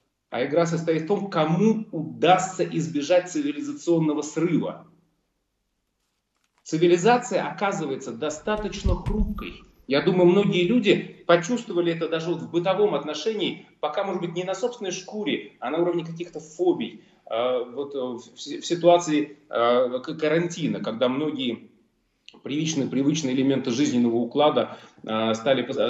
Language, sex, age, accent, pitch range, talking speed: Russian, male, 30-49, native, 125-185 Hz, 110 wpm